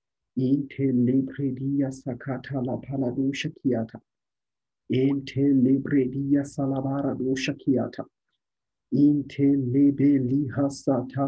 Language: English